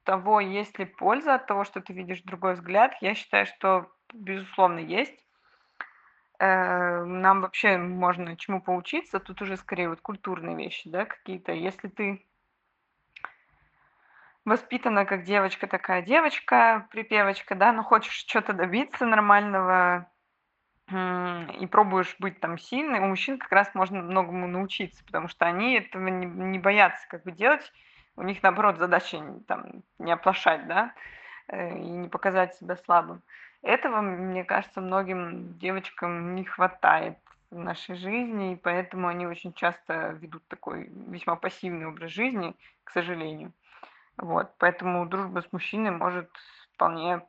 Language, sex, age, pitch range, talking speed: Russian, female, 20-39, 180-205 Hz, 130 wpm